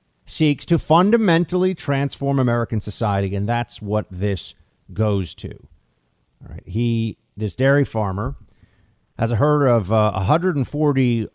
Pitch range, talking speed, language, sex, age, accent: 105-145 Hz, 125 wpm, English, male, 50-69, American